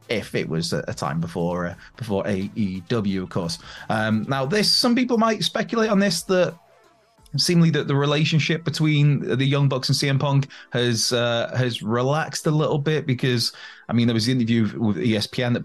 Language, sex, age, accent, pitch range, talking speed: English, male, 30-49, British, 110-155 Hz, 190 wpm